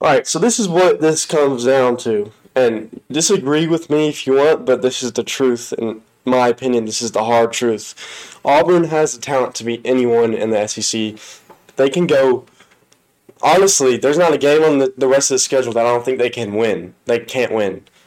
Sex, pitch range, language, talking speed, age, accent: male, 120-160 Hz, English, 220 wpm, 20-39, American